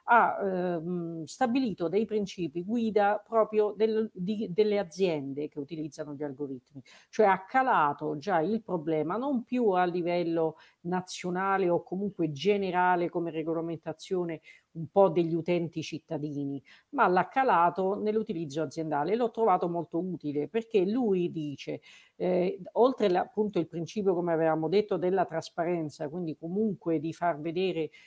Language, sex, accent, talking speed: Italian, female, native, 135 wpm